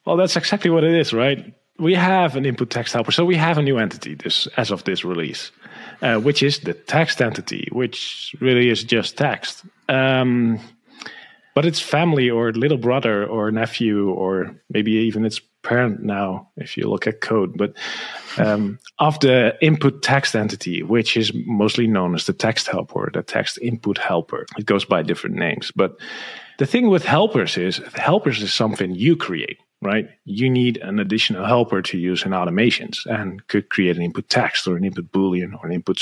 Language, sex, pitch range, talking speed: English, male, 105-140 Hz, 190 wpm